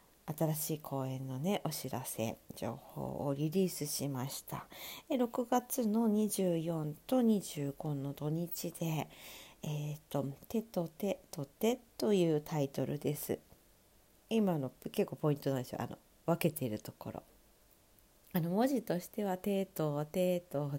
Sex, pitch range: female, 140-195 Hz